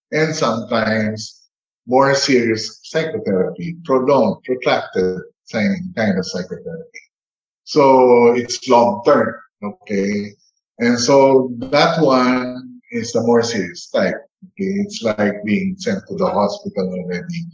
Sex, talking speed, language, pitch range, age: male, 115 wpm, English, 105-170 Hz, 50-69